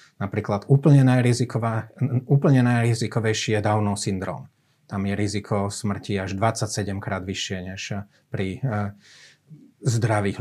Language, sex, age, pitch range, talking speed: Slovak, male, 30-49, 105-130 Hz, 110 wpm